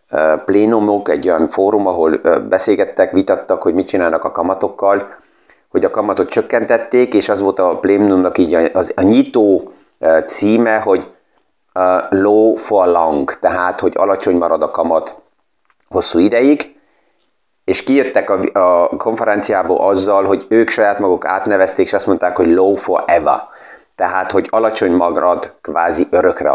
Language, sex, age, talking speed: Hungarian, male, 30-49, 140 wpm